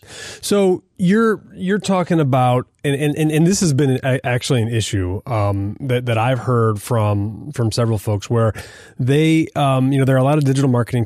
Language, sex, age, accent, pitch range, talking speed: English, male, 30-49, American, 115-145 Hz, 190 wpm